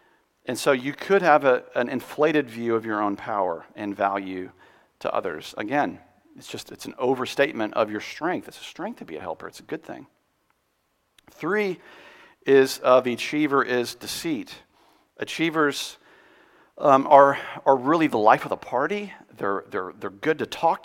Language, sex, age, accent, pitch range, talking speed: English, male, 50-69, American, 110-150 Hz, 175 wpm